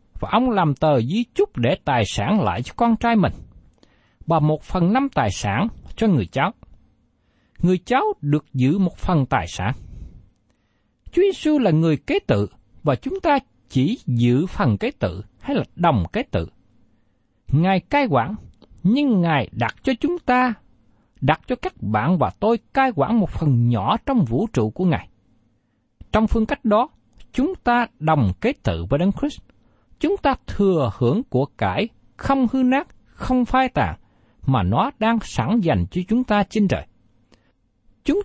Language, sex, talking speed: Vietnamese, male, 175 wpm